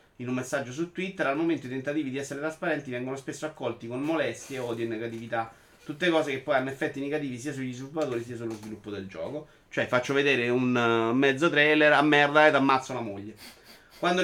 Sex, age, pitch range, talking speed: male, 30-49, 115-150 Hz, 200 wpm